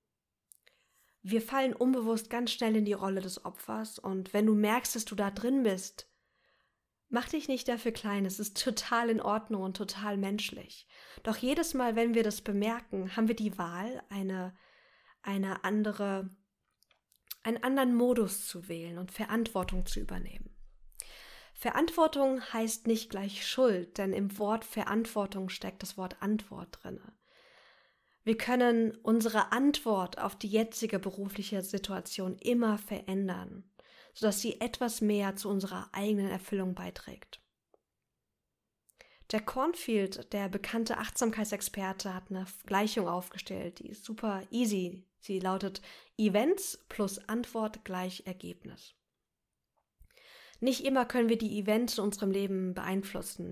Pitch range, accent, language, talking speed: 195-230 Hz, German, German, 130 wpm